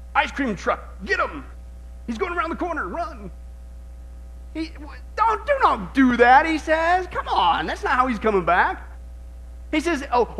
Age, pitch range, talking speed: 40-59, 195-290 Hz, 175 wpm